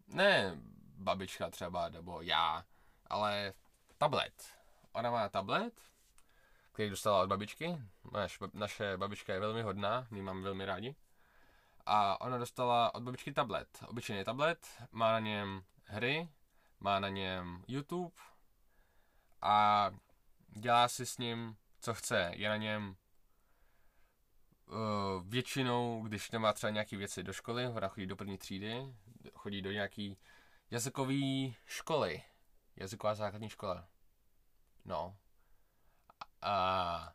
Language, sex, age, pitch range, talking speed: Czech, male, 20-39, 100-125 Hz, 115 wpm